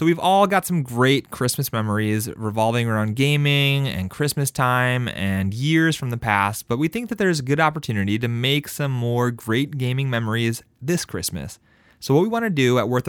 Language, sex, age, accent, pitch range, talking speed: English, male, 30-49, American, 110-150 Hz, 200 wpm